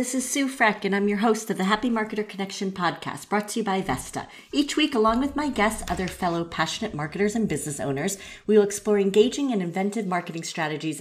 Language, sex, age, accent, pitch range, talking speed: English, female, 40-59, American, 165-215 Hz, 220 wpm